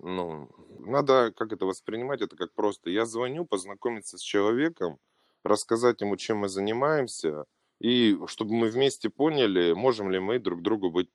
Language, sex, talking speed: Russian, male, 155 wpm